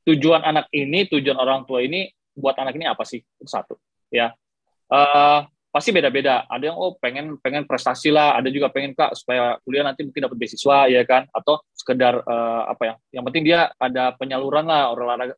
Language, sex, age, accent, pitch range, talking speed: Indonesian, male, 20-39, native, 130-160 Hz, 190 wpm